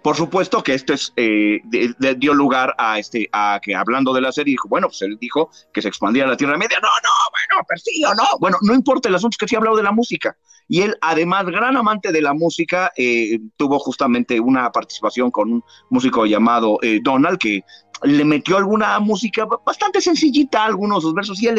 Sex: male